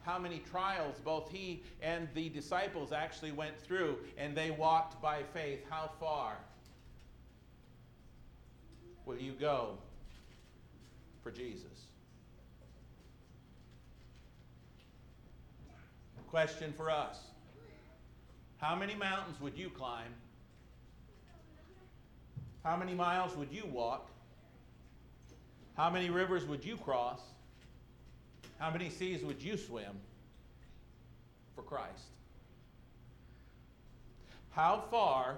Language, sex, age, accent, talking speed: English, male, 50-69, American, 90 wpm